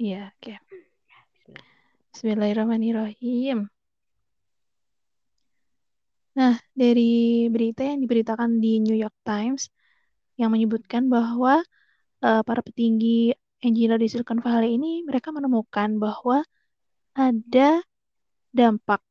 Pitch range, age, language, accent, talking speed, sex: 220-250 Hz, 20-39, Indonesian, native, 85 wpm, female